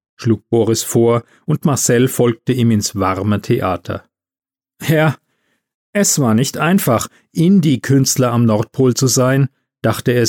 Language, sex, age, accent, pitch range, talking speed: German, male, 40-59, German, 110-150 Hz, 130 wpm